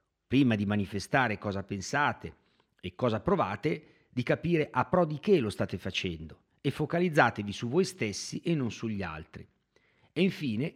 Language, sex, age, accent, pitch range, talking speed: Italian, male, 50-69, native, 105-150 Hz, 155 wpm